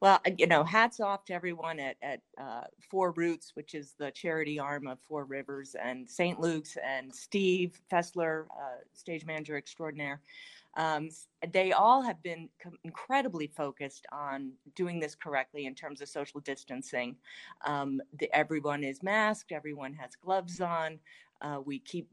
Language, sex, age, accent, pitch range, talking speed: English, female, 30-49, American, 145-180 Hz, 155 wpm